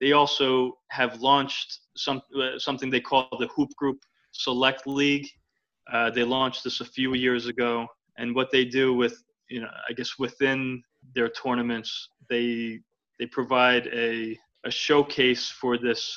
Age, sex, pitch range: 20-39, male, 115-130 Hz